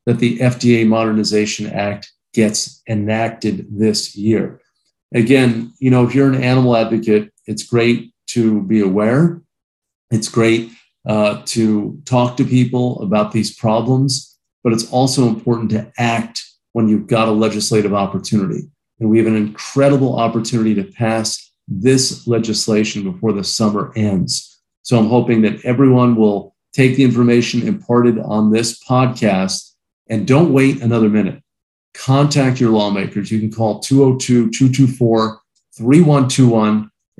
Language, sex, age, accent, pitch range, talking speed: English, male, 50-69, American, 105-125 Hz, 135 wpm